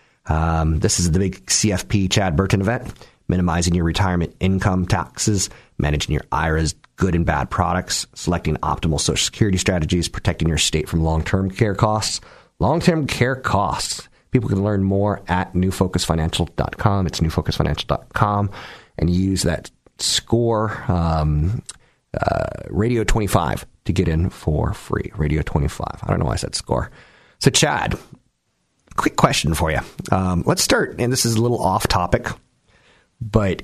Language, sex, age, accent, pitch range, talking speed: English, male, 40-59, American, 85-110 Hz, 150 wpm